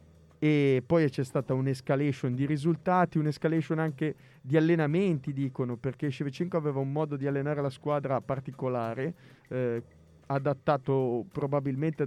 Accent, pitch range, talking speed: native, 125-155 Hz, 125 wpm